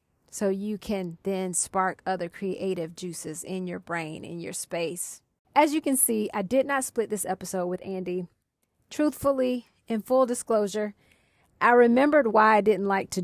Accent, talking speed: American, 170 wpm